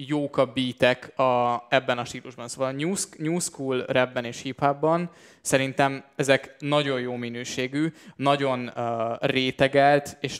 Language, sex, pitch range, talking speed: Hungarian, male, 120-140 Hz, 120 wpm